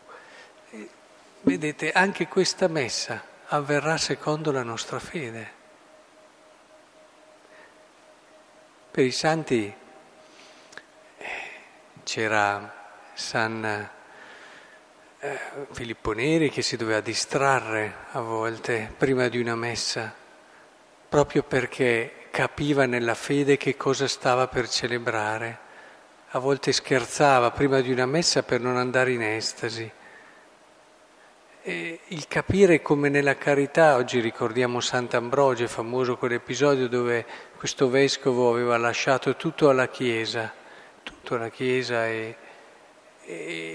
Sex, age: male, 50-69